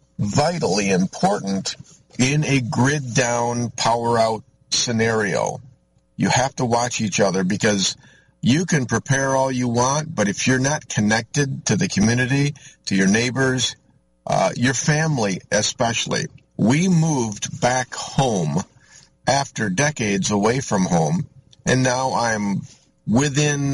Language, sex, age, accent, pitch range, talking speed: English, male, 50-69, American, 105-135 Hz, 120 wpm